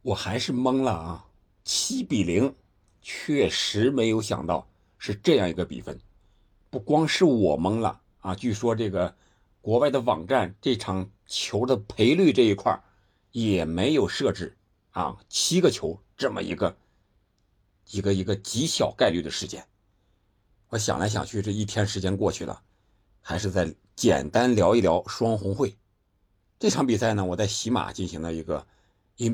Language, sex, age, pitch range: Chinese, male, 50-69, 95-110 Hz